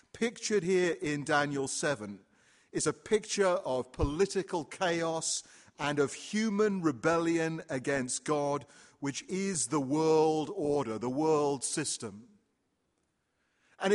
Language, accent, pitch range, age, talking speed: English, British, 135-175 Hz, 40-59, 110 wpm